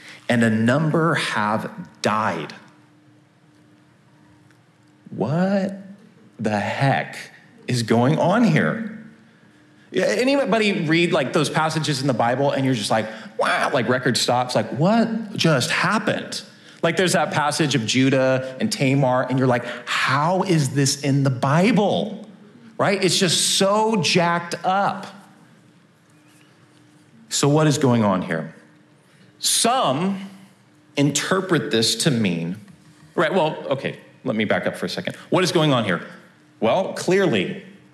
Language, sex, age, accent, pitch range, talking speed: English, male, 40-59, American, 120-175 Hz, 130 wpm